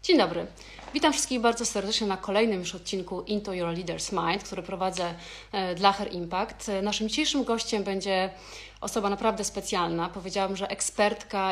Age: 30-49